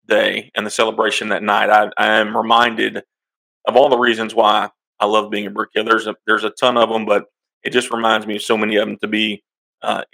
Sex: male